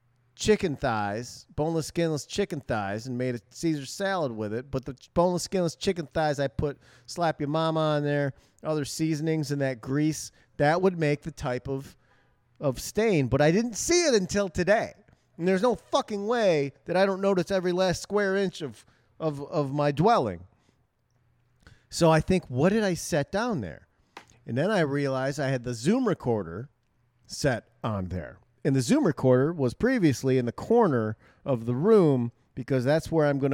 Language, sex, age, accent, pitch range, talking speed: English, male, 40-59, American, 125-185 Hz, 185 wpm